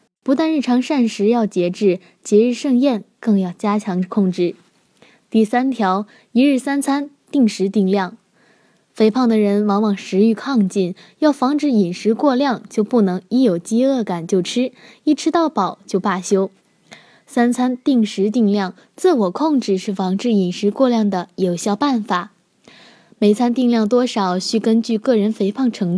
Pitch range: 195-245 Hz